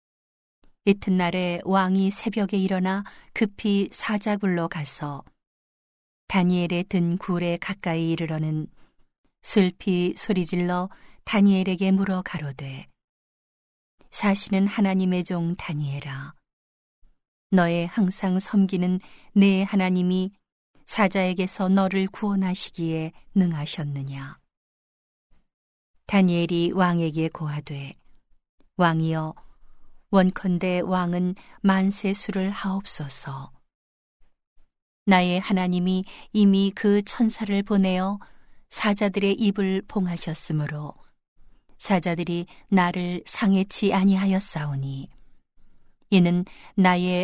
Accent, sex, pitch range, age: native, female, 165-195 Hz, 40-59